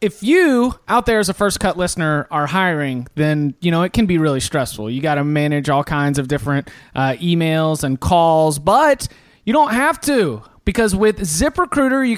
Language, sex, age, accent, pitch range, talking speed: English, male, 30-49, American, 170-235 Hz, 190 wpm